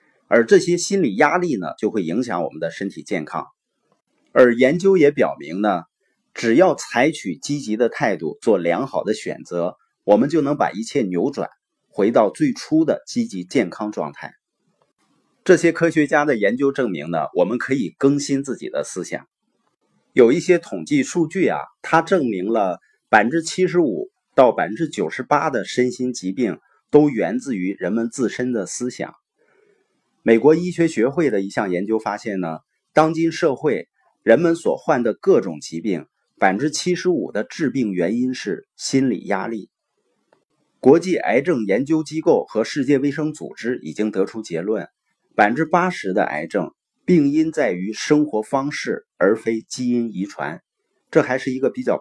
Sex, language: male, Chinese